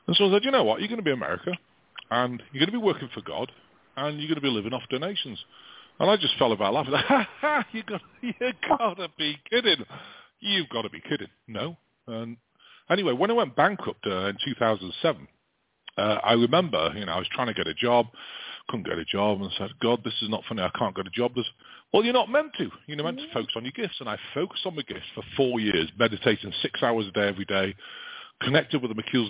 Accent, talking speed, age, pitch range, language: British, 235 wpm, 40-59, 115-175 Hz, English